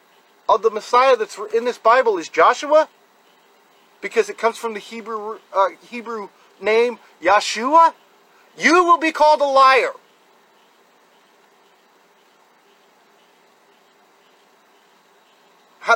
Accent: American